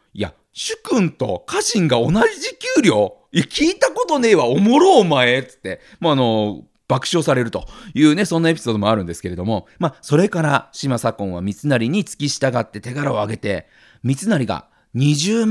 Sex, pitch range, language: male, 115-175 Hz, Japanese